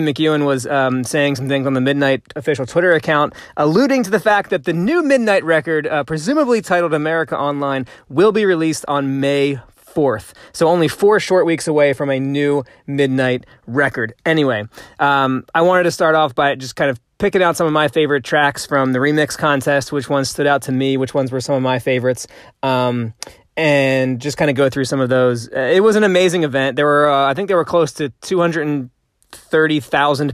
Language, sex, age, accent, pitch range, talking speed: English, male, 20-39, American, 130-155 Hz, 210 wpm